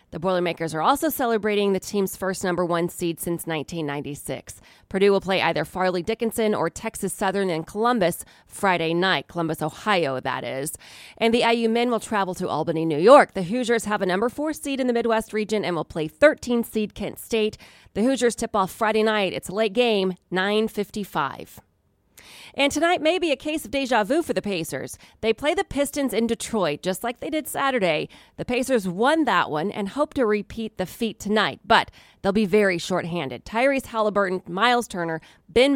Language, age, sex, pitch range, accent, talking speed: English, 30-49, female, 175-230 Hz, American, 190 wpm